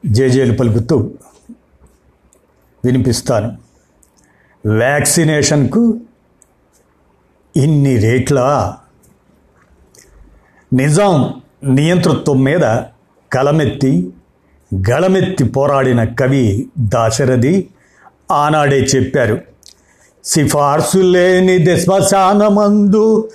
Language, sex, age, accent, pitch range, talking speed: Telugu, male, 50-69, native, 125-180 Hz, 45 wpm